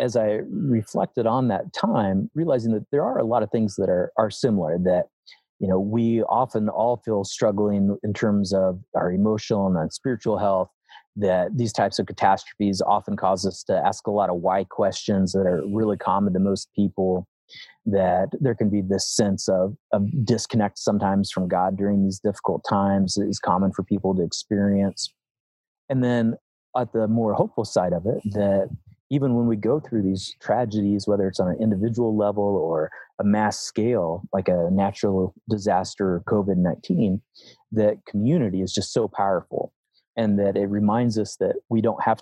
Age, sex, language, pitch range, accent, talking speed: 30-49, male, English, 95-115 Hz, American, 185 wpm